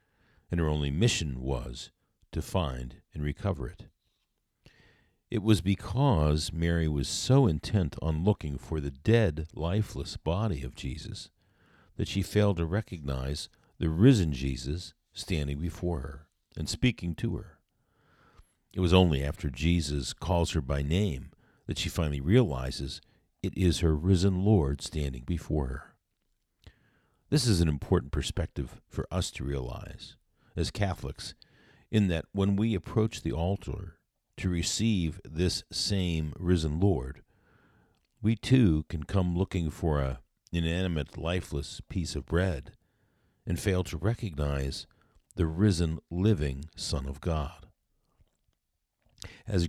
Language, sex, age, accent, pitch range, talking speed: English, male, 50-69, American, 75-100 Hz, 130 wpm